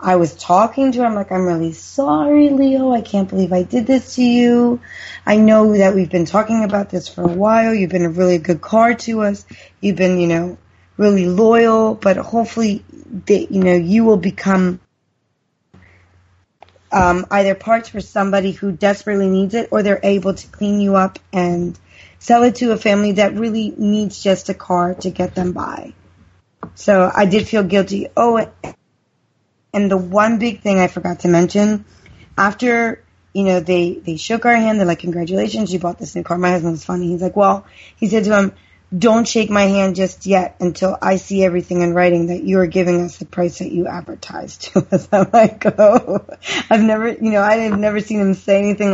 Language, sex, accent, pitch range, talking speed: English, female, American, 180-215 Hz, 200 wpm